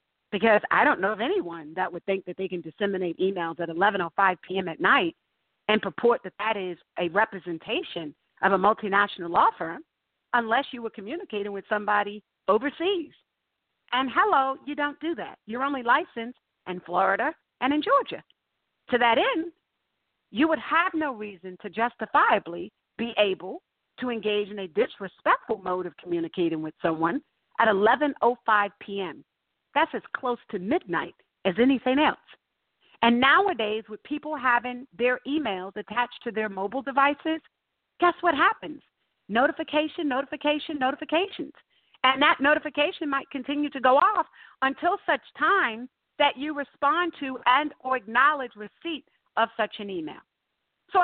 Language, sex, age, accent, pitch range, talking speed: English, female, 50-69, American, 205-295 Hz, 150 wpm